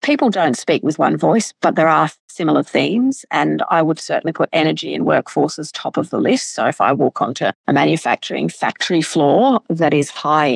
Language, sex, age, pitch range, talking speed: English, female, 40-59, 155-200 Hz, 200 wpm